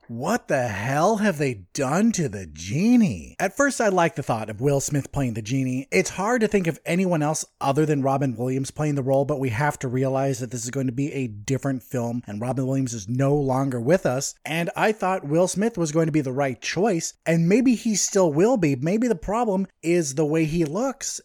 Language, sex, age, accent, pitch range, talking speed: English, male, 30-49, American, 135-180 Hz, 235 wpm